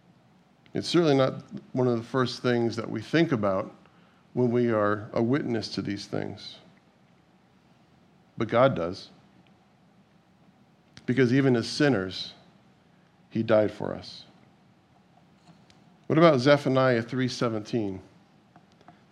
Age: 50-69